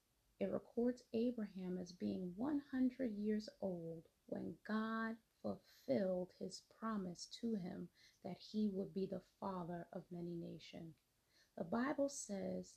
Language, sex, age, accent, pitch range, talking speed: English, female, 30-49, American, 180-245 Hz, 125 wpm